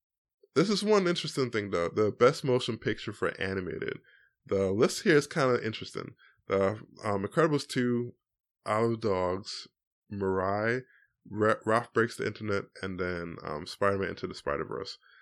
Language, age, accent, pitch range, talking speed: English, 20-39, American, 100-130 Hz, 150 wpm